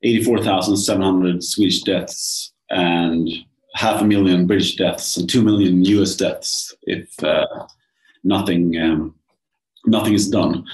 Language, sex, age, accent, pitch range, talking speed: Danish, male, 30-49, Norwegian, 90-110 Hz, 115 wpm